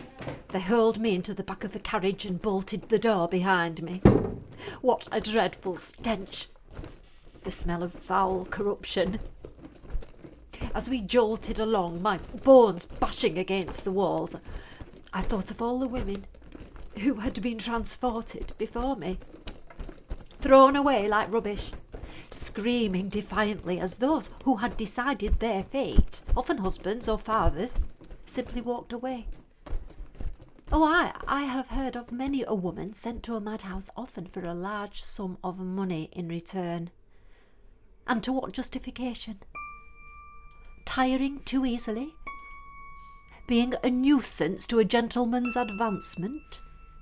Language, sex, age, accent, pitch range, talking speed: English, female, 40-59, British, 195-260 Hz, 130 wpm